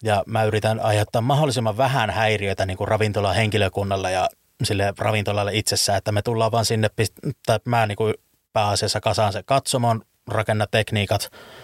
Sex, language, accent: male, Finnish, native